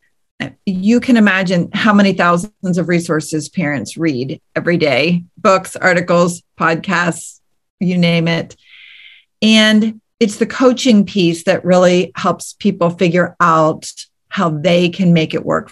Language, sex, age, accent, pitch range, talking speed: English, female, 40-59, American, 165-200 Hz, 135 wpm